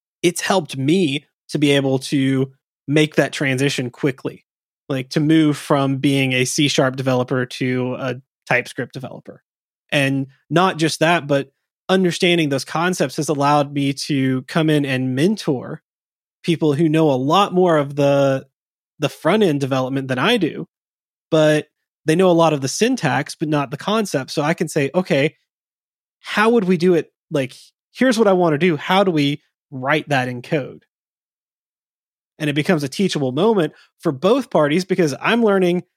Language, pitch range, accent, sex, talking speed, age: English, 135-170 Hz, American, male, 170 wpm, 20-39